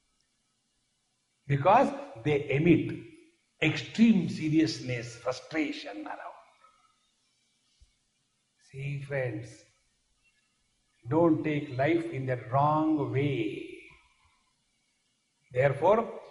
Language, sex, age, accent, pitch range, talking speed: English, male, 60-79, Indian, 135-205 Hz, 65 wpm